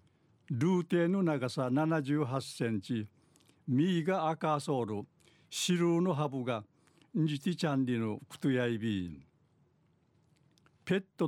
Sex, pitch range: male, 130-165 Hz